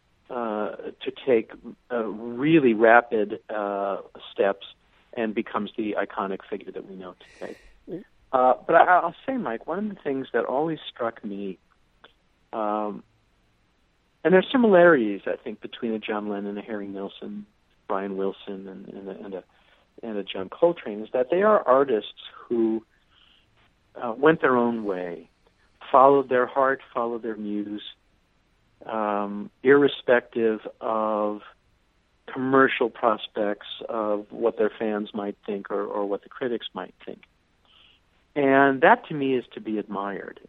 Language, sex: English, male